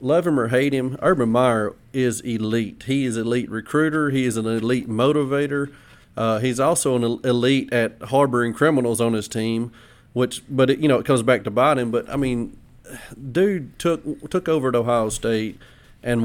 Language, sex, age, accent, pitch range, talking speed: English, male, 30-49, American, 120-140 Hz, 185 wpm